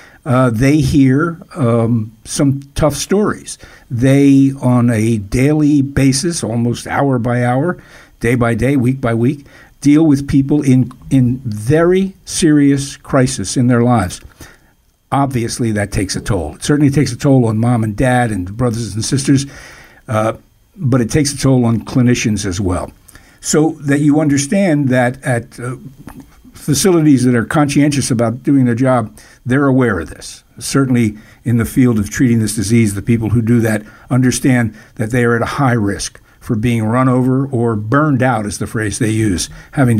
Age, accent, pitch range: 60-79, American, 115-140 Hz